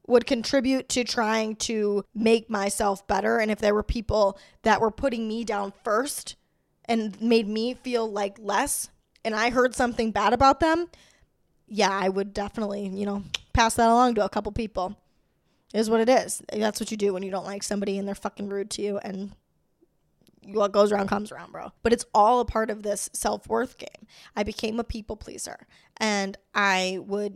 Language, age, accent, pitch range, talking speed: English, 10-29, American, 205-230 Hz, 195 wpm